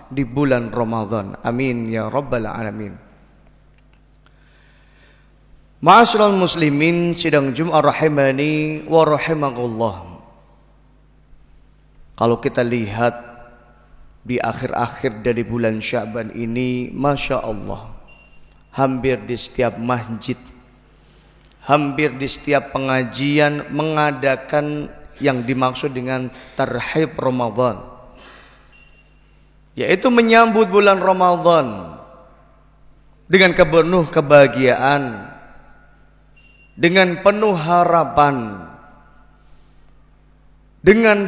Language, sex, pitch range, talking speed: Indonesian, male, 125-175 Hz, 70 wpm